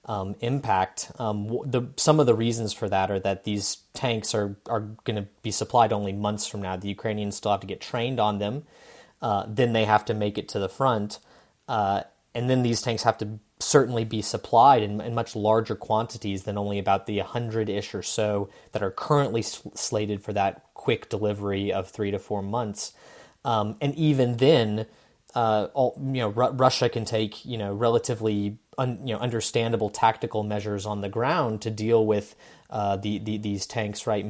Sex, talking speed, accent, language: male, 195 wpm, American, English